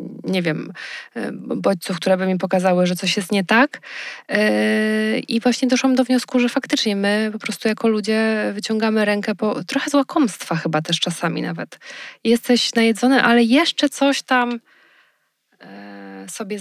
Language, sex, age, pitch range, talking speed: Polish, female, 20-39, 180-230 Hz, 150 wpm